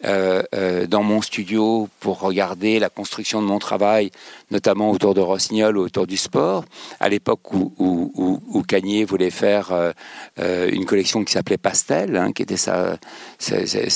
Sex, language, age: male, French, 60-79